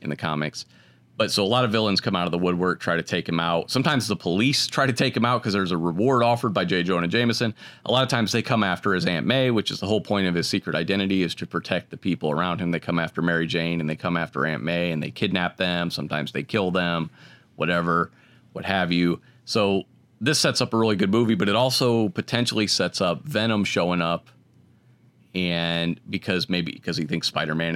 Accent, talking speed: American, 235 wpm